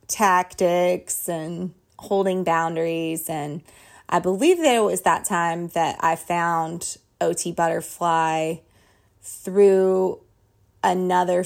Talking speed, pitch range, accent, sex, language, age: 100 wpm, 155-185 Hz, American, female, English, 20-39